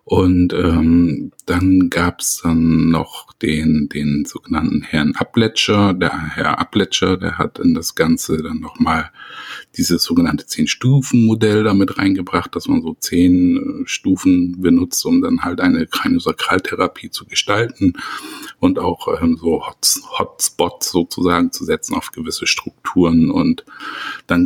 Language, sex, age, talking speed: German, male, 50-69, 130 wpm